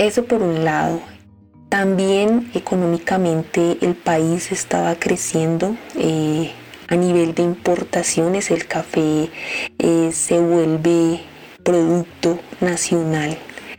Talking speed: 95 wpm